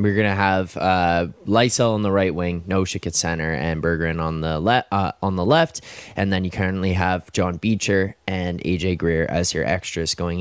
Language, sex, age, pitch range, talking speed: English, male, 20-39, 90-110 Hz, 195 wpm